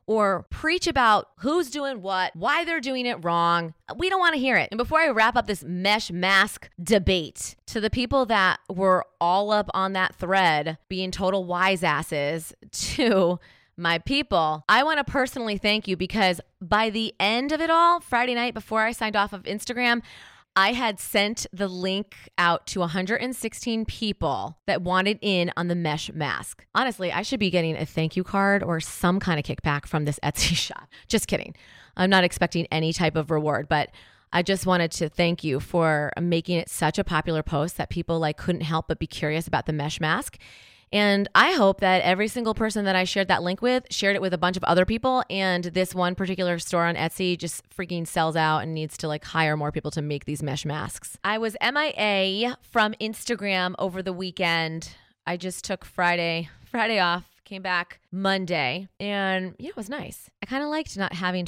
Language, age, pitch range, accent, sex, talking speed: English, 20-39, 165-210 Hz, American, female, 200 wpm